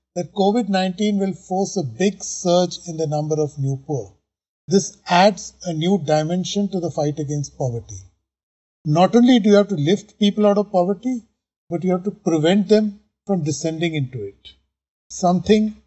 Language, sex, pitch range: English, male, 145-185 Hz